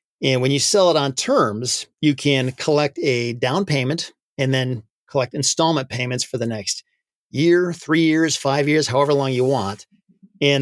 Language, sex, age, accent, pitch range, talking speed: English, male, 30-49, American, 125-155 Hz, 175 wpm